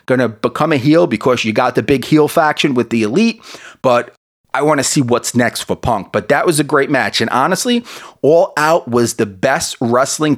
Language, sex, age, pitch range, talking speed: English, male, 30-49, 120-155 Hz, 220 wpm